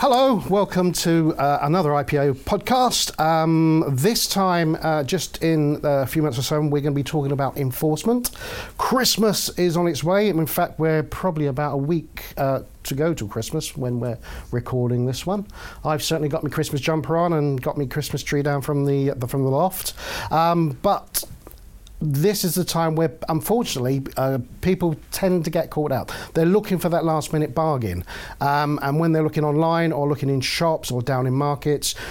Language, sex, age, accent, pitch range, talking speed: English, male, 50-69, British, 140-170 Hz, 190 wpm